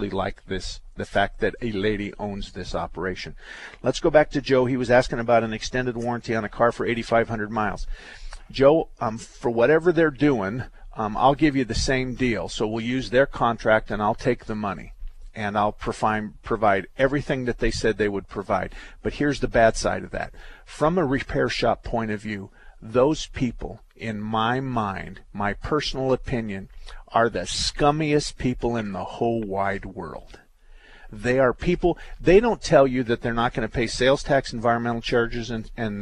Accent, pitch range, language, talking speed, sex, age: American, 110-135 Hz, English, 185 wpm, male, 50-69